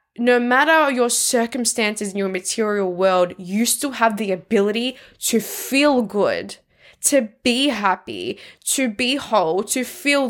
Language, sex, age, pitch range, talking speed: English, female, 10-29, 205-290 Hz, 140 wpm